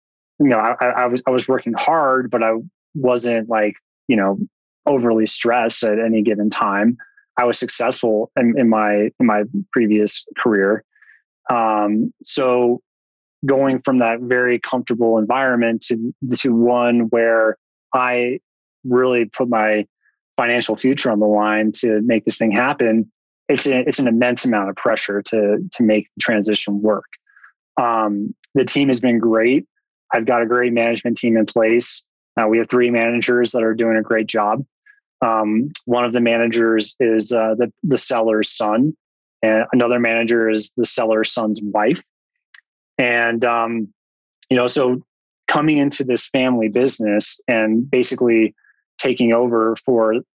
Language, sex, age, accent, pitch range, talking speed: English, male, 20-39, American, 110-125 Hz, 155 wpm